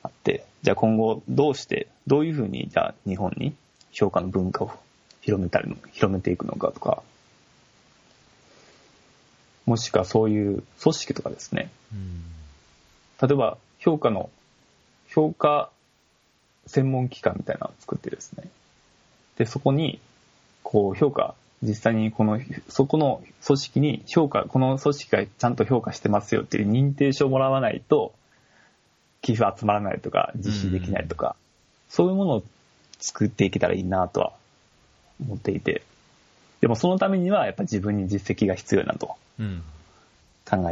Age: 20-39